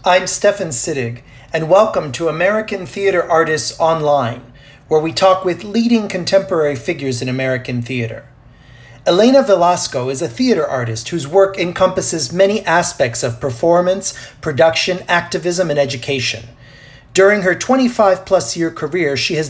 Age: 40-59